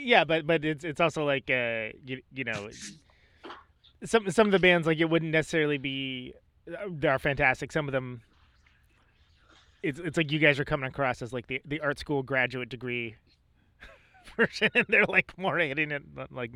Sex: male